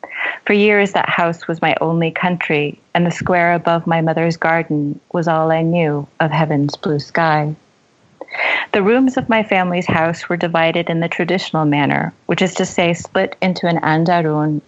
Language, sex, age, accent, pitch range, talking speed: English, female, 40-59, American, 160-185 Hz, 175 wpm